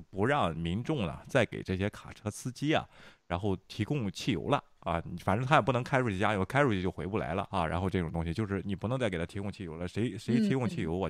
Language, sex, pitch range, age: Chinese, male, 90-145 Hz, 30-49